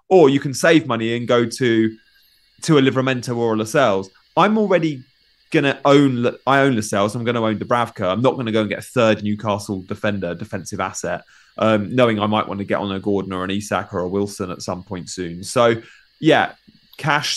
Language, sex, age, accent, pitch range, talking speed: English, male, 30-49, British, 100-125 Hz, 205 wpm